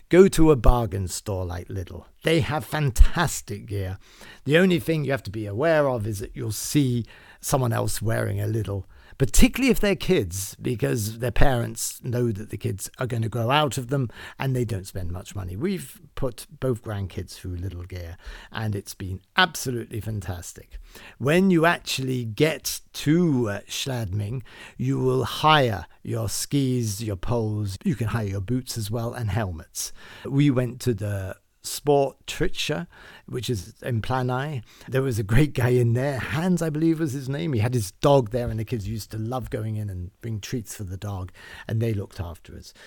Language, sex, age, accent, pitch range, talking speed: English, male, 50-69, British, 100-135 Hz, 190 wpm